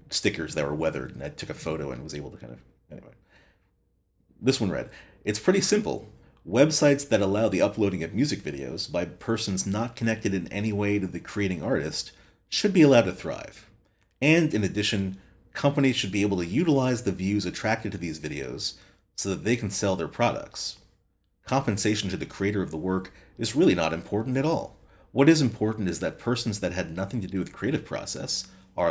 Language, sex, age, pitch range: English, male, 30-49, 95-110 Hz